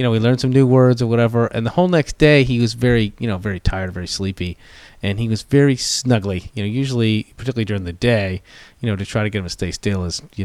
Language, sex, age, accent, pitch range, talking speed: English, male, 30-49, American, 105-125 Hz, 270 wpm